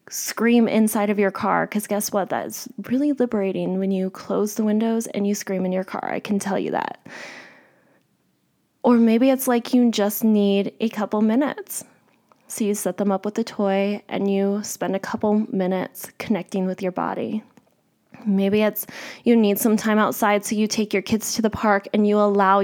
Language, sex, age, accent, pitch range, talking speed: English, female, 20-39, American, 200-240 Hz, 195 wpm